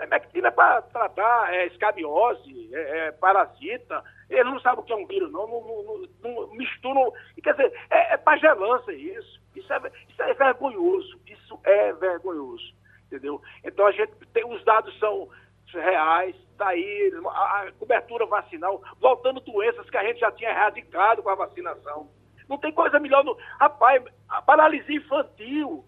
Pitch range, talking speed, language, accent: 240-390 Hz, 165 wpm, Portuguese, Brazilian